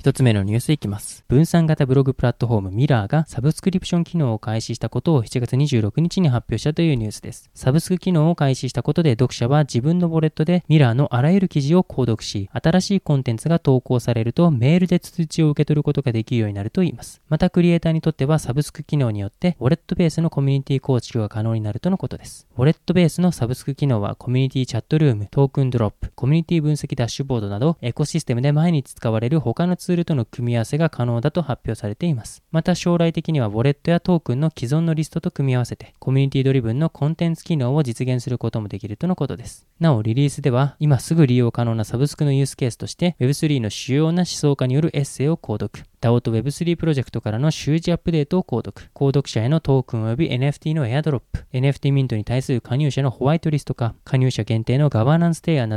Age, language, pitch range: 20-39, Japanese, 120-160 Hz